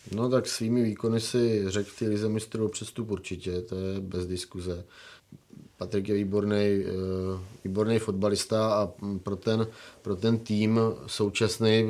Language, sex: Czech, male